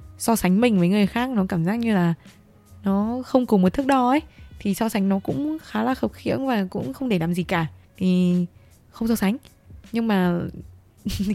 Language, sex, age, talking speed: Vietnamese, female, 20-39, 215 wpm